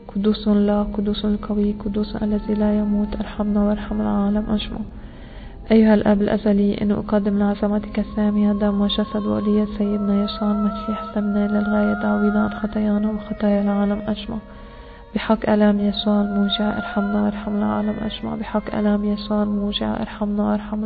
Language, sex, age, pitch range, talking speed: English, female, 20-39, 205-215 Hz, 135 wpm